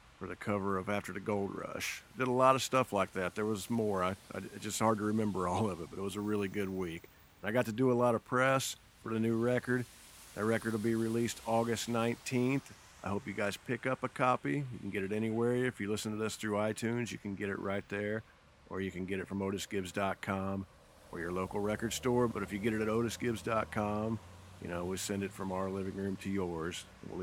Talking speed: 235 wpm